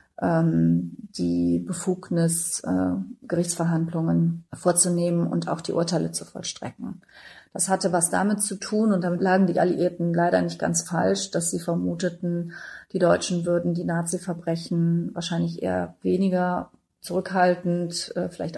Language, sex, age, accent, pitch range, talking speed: German, female, 30-49, German, 135-180 Hz, 125 wpm